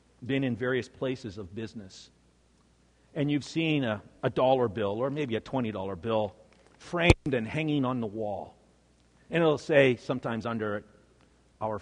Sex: male